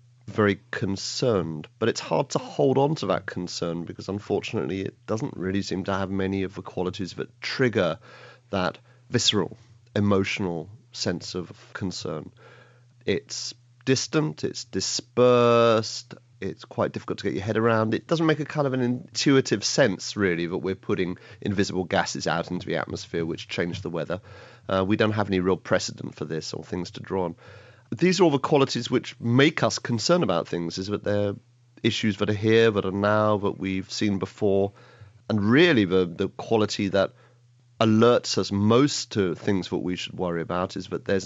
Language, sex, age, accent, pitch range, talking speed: English, male, 40-59, British, 95-120 Hz, 180 wpm